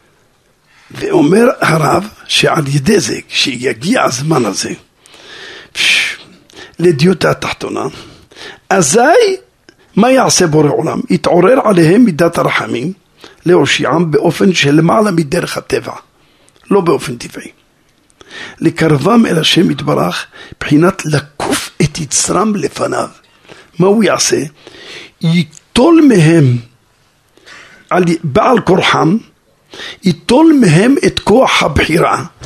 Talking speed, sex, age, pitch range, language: 95 wpm, male, 50-69, 160-220 Hz, Hebrew